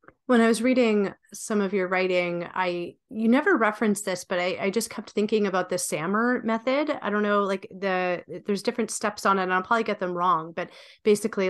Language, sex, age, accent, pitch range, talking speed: English, female, 30-49, American, 185-230 Hz, 215 wpm